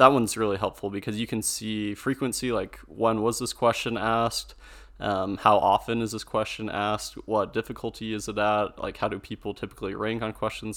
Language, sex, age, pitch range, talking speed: English, male, 20-39, 105-115 Hz, 195 wpm